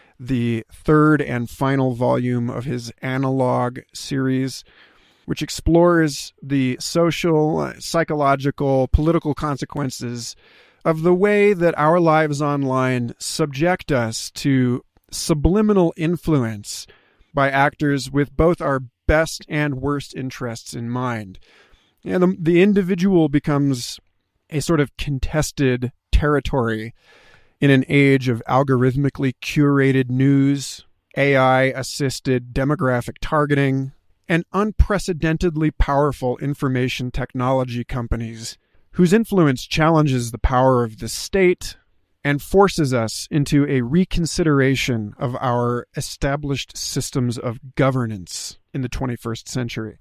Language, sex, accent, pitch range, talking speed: English, male, American, 125-155 Hz, 105 wpm